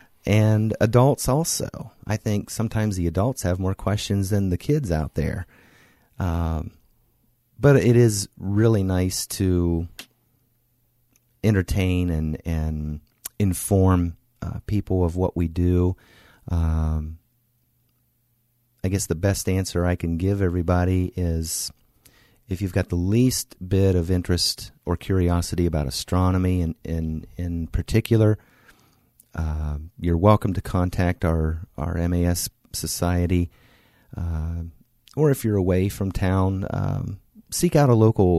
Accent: American